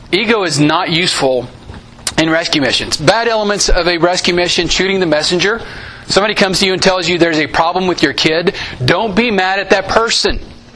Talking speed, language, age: 195 wpm, English, 40-59